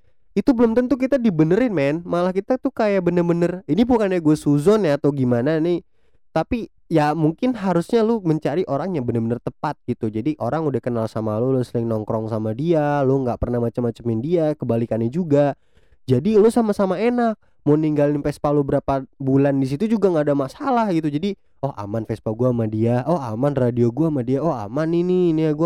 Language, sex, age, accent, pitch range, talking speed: Indonesian, male, 20-39, native, 120-175 Hz, 195 wpm